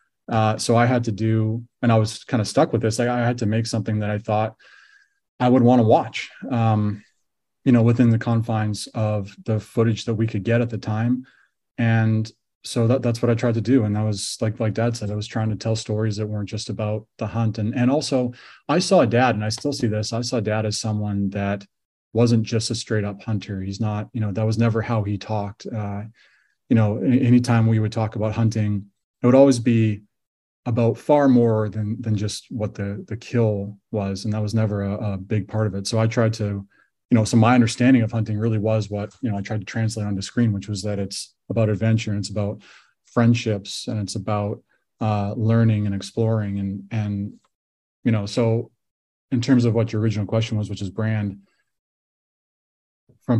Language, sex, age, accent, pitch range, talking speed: English, male, 20-39, American, 105-115 Hz, 220 wpm